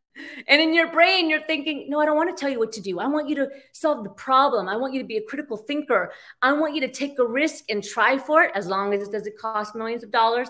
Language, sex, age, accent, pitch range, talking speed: English, female, 30-49, American, 215-280 Hz, 290 wpm